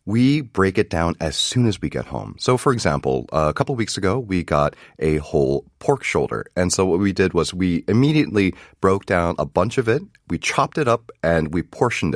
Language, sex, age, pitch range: Korean, male, 30-49, 75-105 Hz